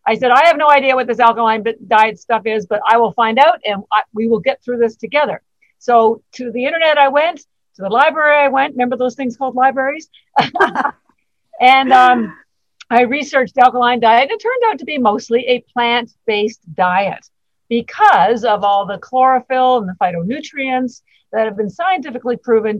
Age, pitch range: 50-69, 215-280 Hz